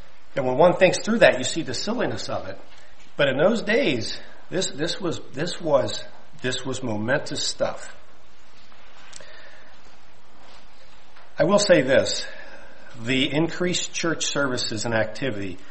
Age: 50-69